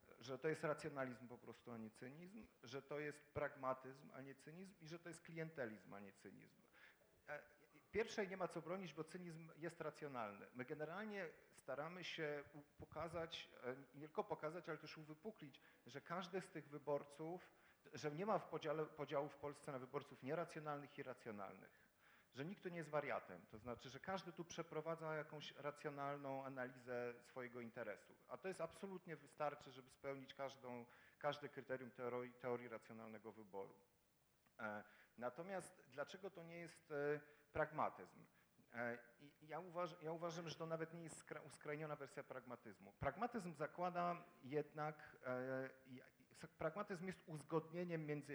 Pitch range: 130-165 Hz